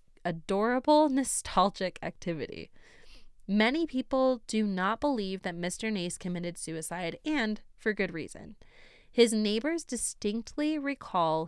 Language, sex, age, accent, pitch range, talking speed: English, female, 20-39, American, 175-240 Hz, 110 wpm